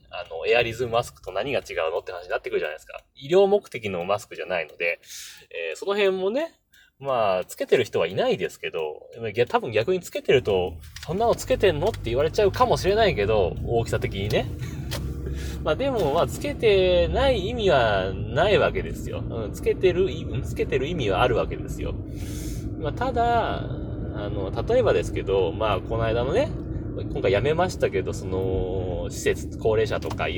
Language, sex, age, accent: Japanese, male, 20-39, native